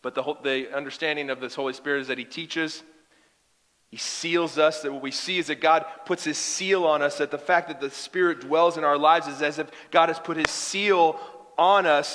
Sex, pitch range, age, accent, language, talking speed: male, 145-170 Hz, 40-59, American, English, 235 wpm